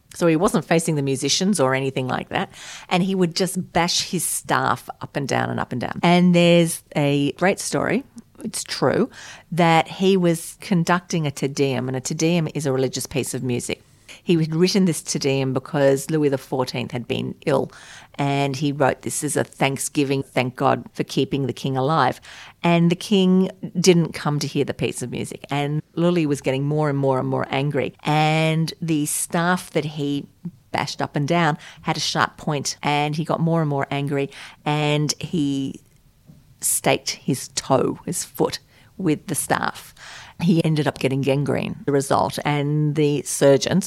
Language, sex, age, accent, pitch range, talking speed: English, female, 40-59, Australian, 135-175 Hz, 185 wpm